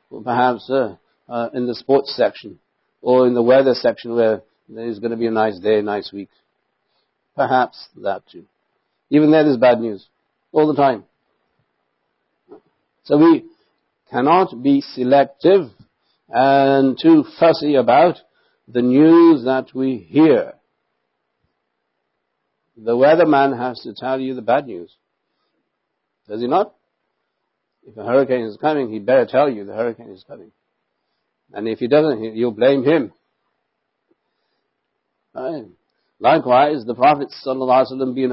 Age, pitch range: 60-79, 115-145 Hz